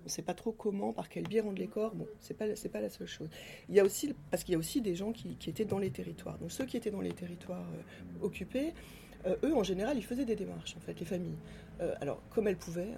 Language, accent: French, French